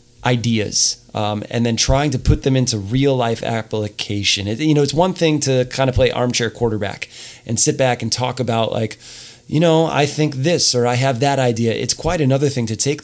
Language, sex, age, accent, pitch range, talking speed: English, male, 20-39, American, 115-135 Hz, 210 wpm